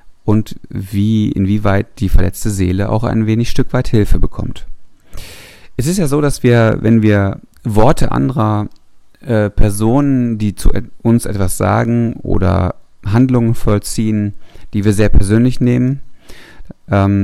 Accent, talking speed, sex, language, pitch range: German, 135 wpm, male, German, 100-115 Hz